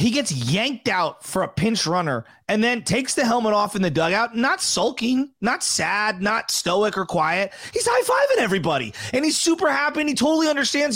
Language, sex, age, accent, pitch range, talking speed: English, male, 30-49, American, 195-255 Hz, 205 wpm